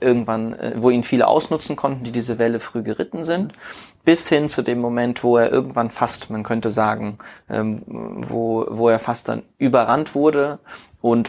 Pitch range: 110-125 Hz